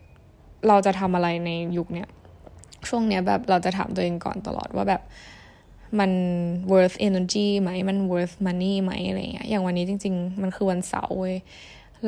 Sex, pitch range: female, 180-215 Hz